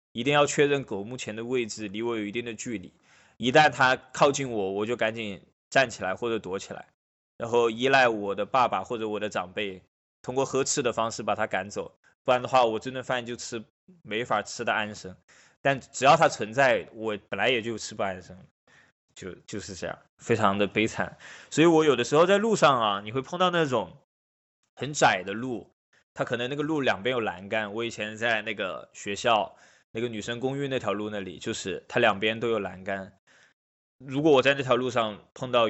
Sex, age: male, 20-39